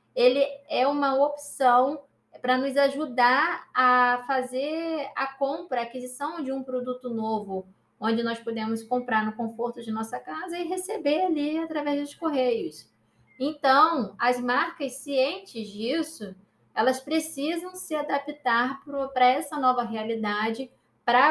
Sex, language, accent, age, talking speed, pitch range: female, Portuguese, Brazilian, 20-39, 130 wpm, 230-280 Hz